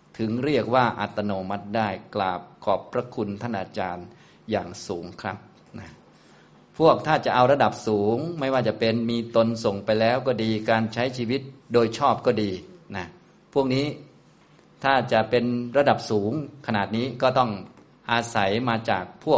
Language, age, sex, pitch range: Thai, 20-39, male, 100-120 Hz